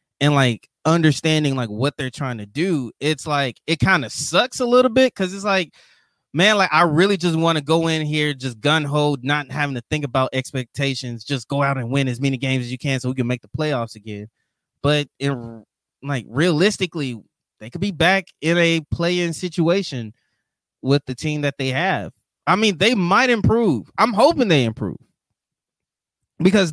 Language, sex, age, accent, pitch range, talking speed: English, male, 20-39, American, 125-165 Hz, 195 wpm